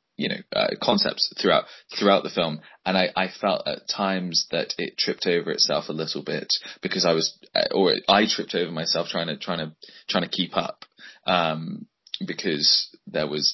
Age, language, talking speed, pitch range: 20-39, English, 185 wpm, 80-105 Hz